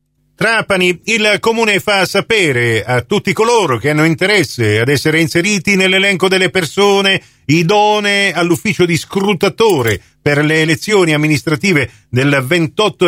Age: 50-69